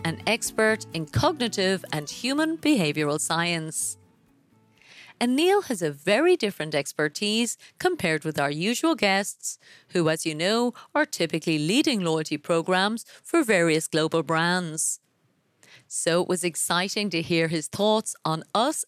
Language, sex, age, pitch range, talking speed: English, female, 30-49, 160-225 Hz, 135 wpm